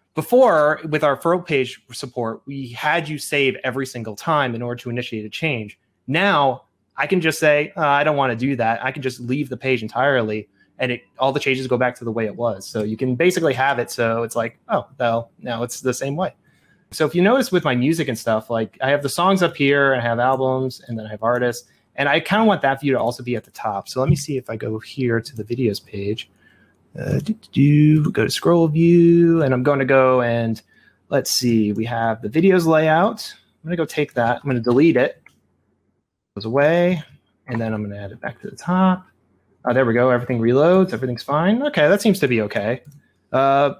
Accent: American